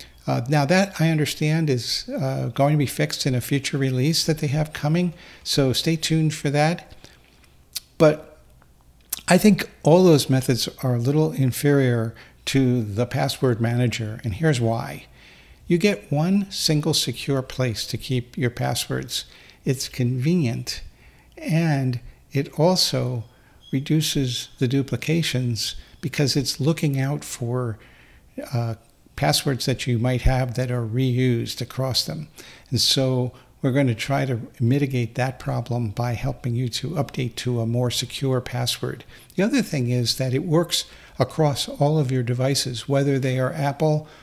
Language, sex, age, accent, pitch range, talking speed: English, male, 50-69, American, 120-145 Hz, 150 wpm